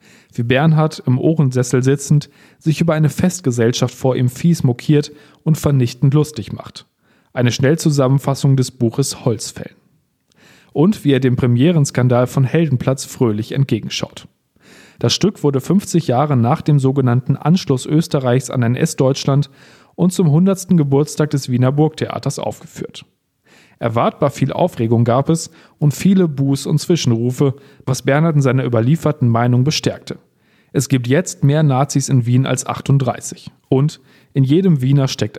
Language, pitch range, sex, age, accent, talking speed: German, 125-155 Hz, male, 40-59, German, 140 wpm